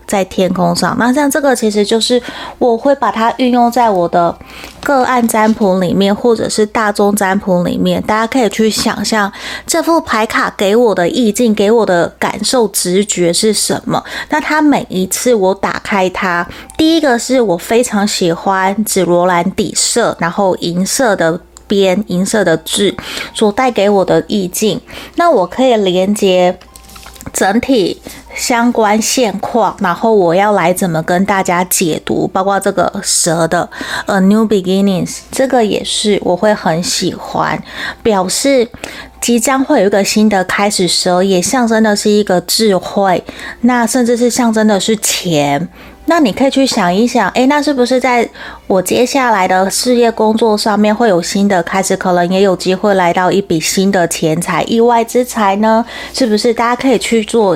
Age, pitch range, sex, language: 20-39, 185-235 Hz, female, Chinese